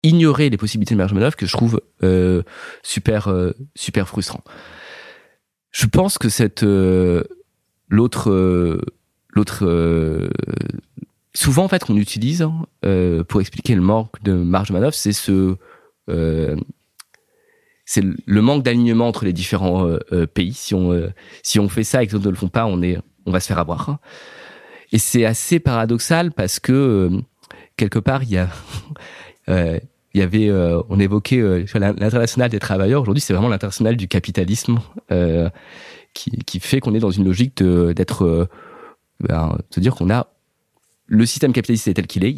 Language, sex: French, male